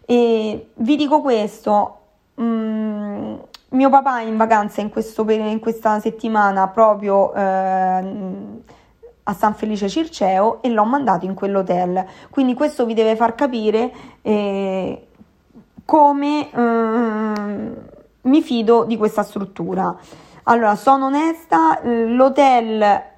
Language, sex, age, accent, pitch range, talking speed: Italian, female, 20-39, native, 205-240 Hz, 100 wpm